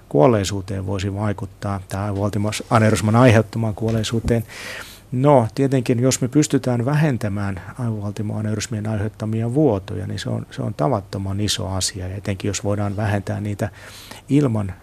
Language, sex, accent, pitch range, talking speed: Finnish, male, native, 100-115 Hz, 125 wpm